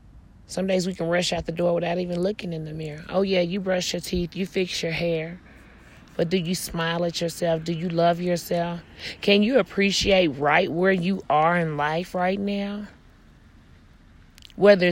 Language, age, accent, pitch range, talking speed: English, 30-49, American, 150-215 Hz, 185 wpm